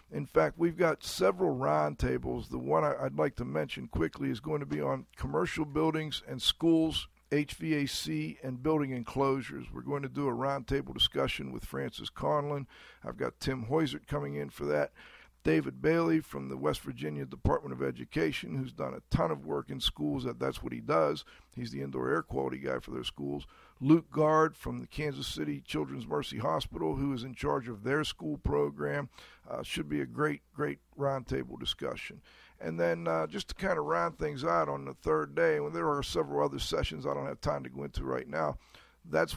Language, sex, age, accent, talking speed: English, male, 50-69, American, 200 wpm